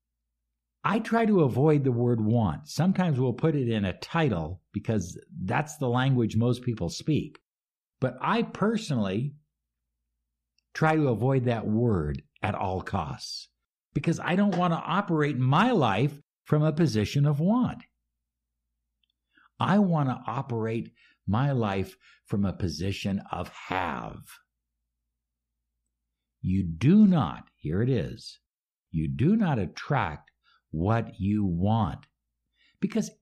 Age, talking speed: 60-79, 125 wpm